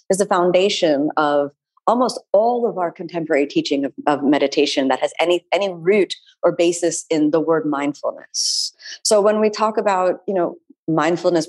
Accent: American